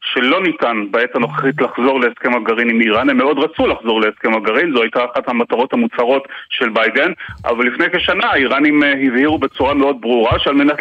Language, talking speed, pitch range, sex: Hebrew, 180 wpm, 135-165 Hz, male